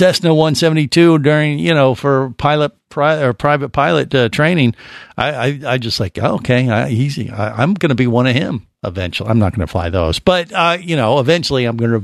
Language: English